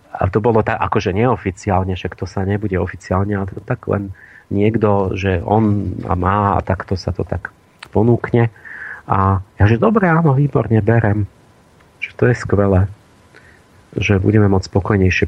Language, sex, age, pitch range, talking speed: Slovak, male, 40-59, 95-120 Hz, 160 wpm